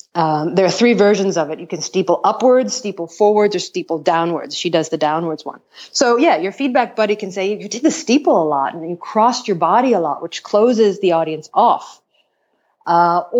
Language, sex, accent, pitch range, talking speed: English, female, American, 175-230 Hz, 210 wpm